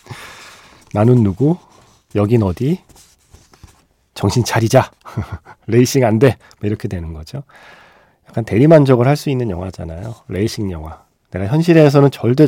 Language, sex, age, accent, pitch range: Korean, male, 40-59, native, 95-140 Hz